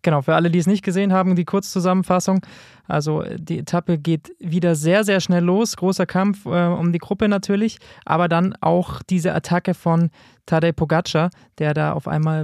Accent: German